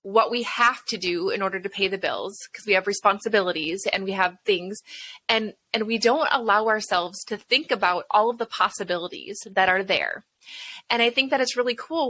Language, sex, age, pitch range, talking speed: English, female, 20-39, 205-250 Hz, 210 wpm